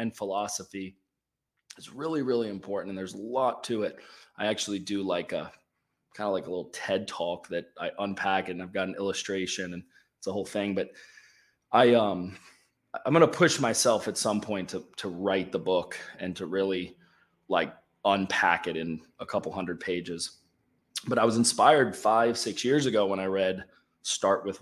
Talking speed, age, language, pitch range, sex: 185 wpm, 20-39, English, 95-120 Hz, male